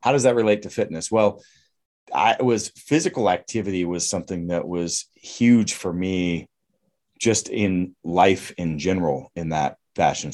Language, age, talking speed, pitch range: English, 30-49, 150 wpm, 85-105 Hz